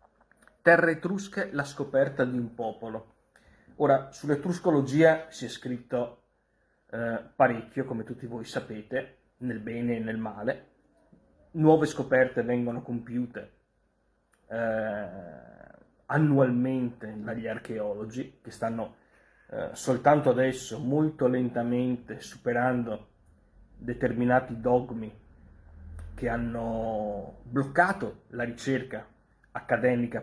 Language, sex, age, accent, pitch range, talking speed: Italian, male, 30-49, native, 110-135 Hz, 95 wpm